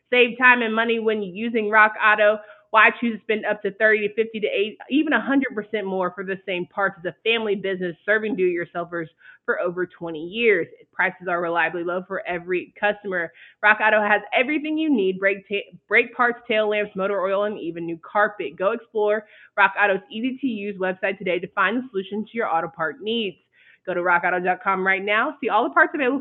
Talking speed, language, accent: 195 wpm, English, American